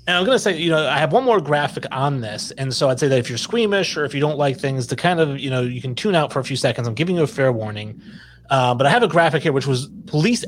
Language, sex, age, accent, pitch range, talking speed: English, male, 30-49, American, 125-165 Hz, 325 wpm